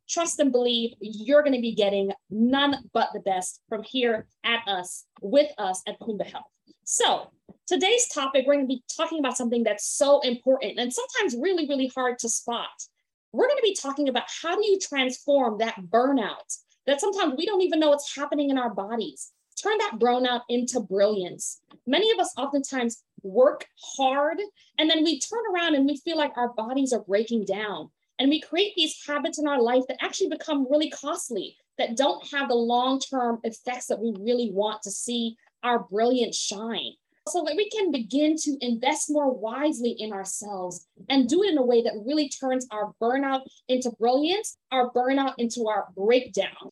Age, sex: 20-39, female